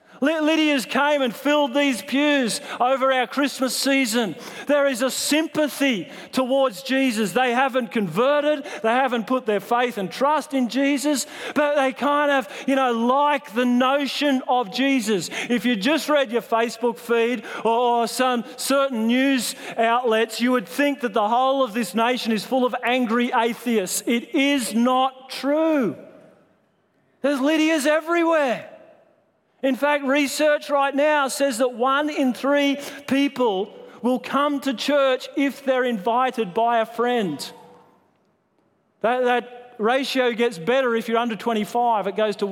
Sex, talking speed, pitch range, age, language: male, 150 wpm, 225-275 Hz, 40-59, English